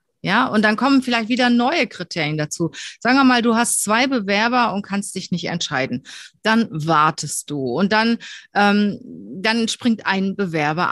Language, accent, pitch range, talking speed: German, German, 175-235 Hz, 170 wpm